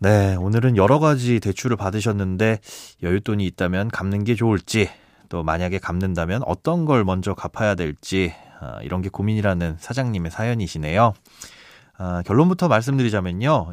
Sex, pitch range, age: male, 95-135 Hz, 30-49